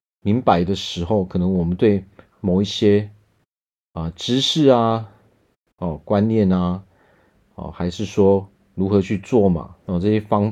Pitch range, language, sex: 90-120 Hz, Chinese, male